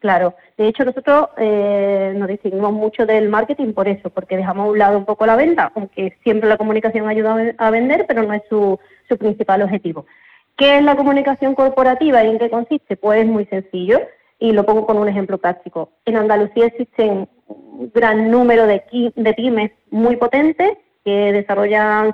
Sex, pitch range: female, 210-260 Hz